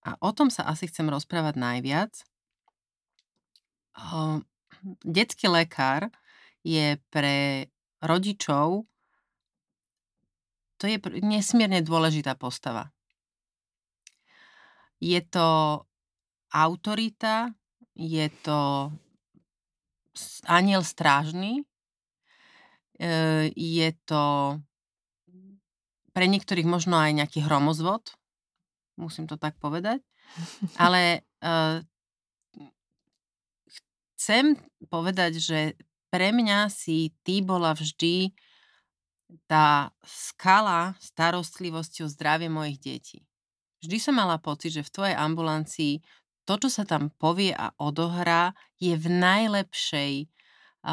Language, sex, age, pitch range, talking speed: Slovak, female, 30-49, 150-190 Hz, 85 wpm